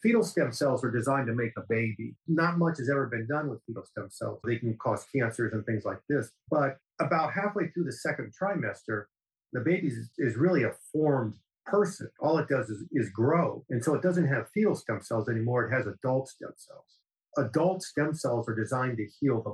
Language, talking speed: English, 210 wpm